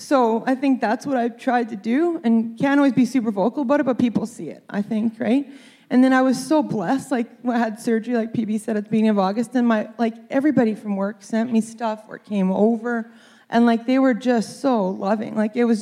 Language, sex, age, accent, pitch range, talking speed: English, female, 20-39, American, 195-235 Hz, 245 wpm